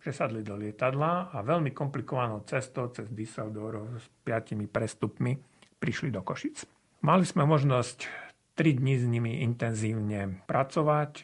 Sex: male